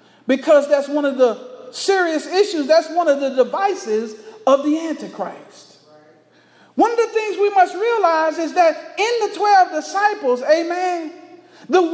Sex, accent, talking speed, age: male, American, 150 wpm, 40-59